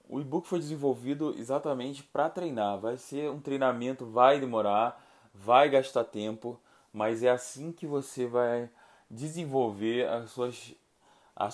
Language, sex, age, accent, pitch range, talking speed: Portuguese, male, 20-39, Brazilian, 115-140 Hz, 125 wpm